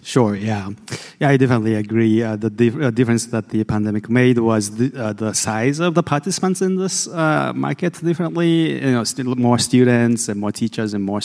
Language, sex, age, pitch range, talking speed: English, male, 30-49, 110-135 Hz, 205 wpm